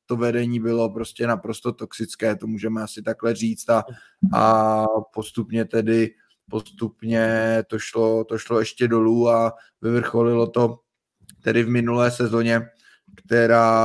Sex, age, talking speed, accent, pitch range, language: male, 20-39, 130 wpm, native, 115-120 Hz, Czech